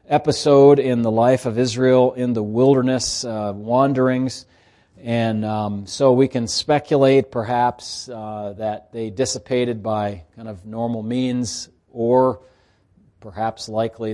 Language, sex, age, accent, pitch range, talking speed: English, male, 40-59, American, 105-130 Hz, 125 wpm